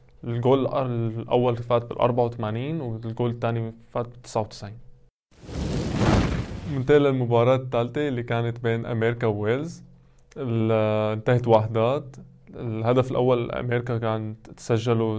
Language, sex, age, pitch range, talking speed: Arabic, male, 20-39, 115-130 Hz, 100 wpm